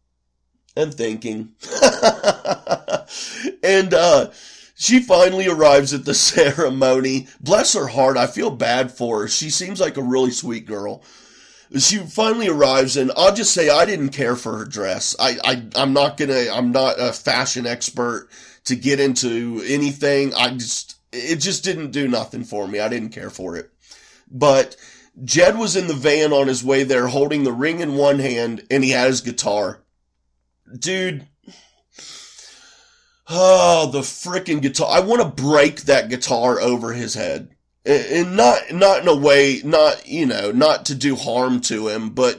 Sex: male